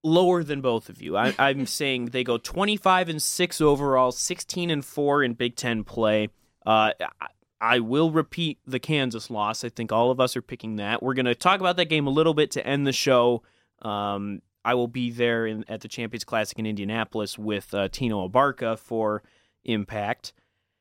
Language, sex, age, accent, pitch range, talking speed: English, male, 30-49, American, 110-150 Hz, 195 wpm